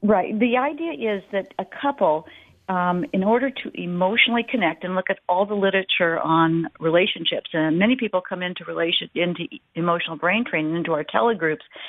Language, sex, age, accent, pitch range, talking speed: English, female, 50-69, American, 170-225 Hz, 170 wpm